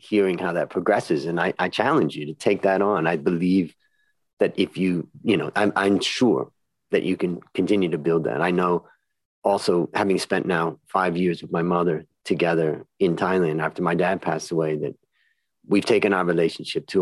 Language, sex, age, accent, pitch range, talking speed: English, male, 40-59, American, 85-105 Hz, 195 wpm